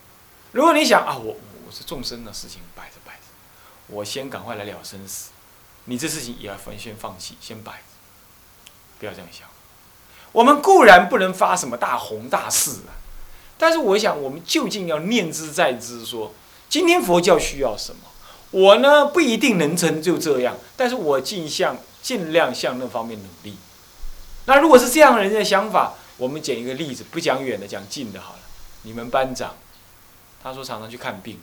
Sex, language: male, Chinese